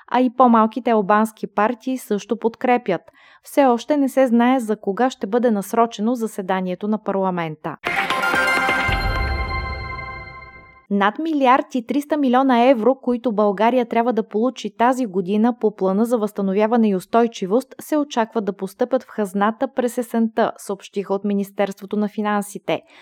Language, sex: Bulgarian, female